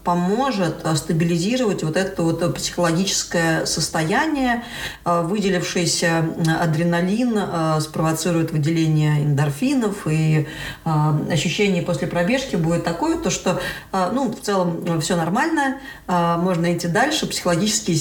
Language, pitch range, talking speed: Russian, 160-190 Hz, 95 wpm